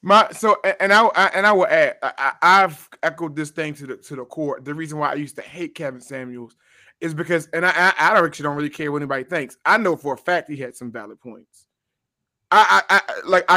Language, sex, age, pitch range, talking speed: English, male, 20-39, 155-210 Hz, 245 wpm